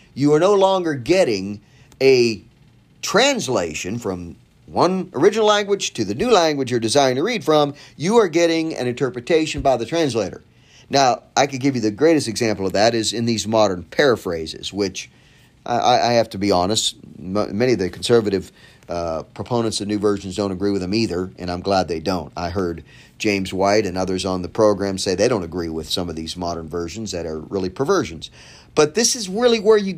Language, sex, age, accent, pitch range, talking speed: English, male, 50-69, American, 100-150 Hz, 200 wpm